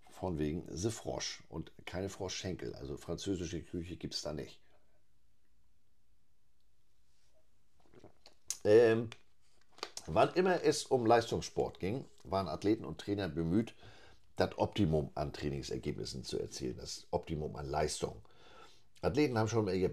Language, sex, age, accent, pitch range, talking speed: German, male, 50-69, German, 75-100 Hz, 115 wpm